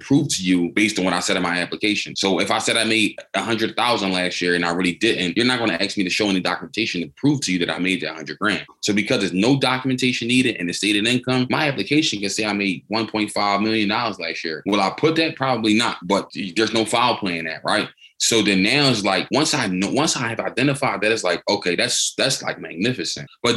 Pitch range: 95-115 Hz